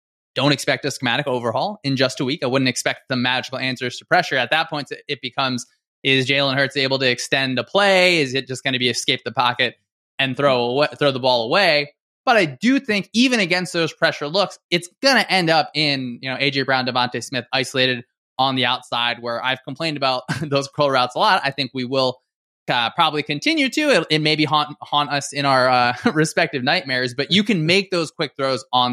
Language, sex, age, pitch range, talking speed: English, male, 20-39, 125-160 Hz, 220 wpm